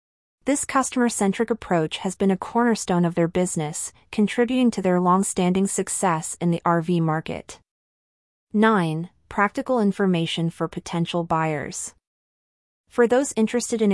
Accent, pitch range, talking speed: American, 170-210 Hz, 125 wpm